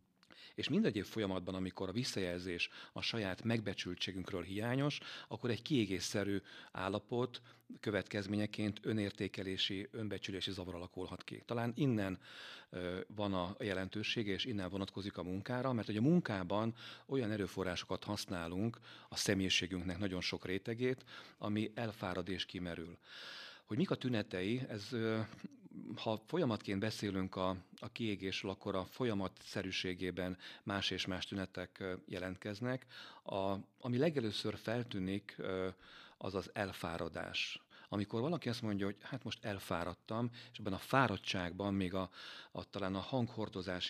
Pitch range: 90-110 Hz